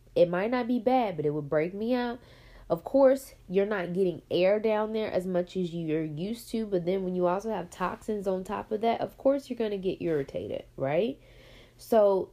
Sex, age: female, 20-39